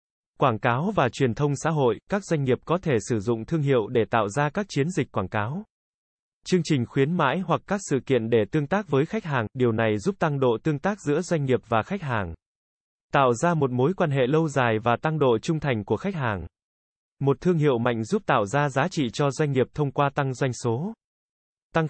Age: 20-39